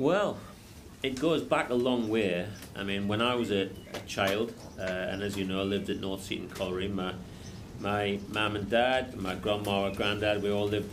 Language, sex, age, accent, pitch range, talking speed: English, male, 40-59, British, 95-115 Hz, 205 wpm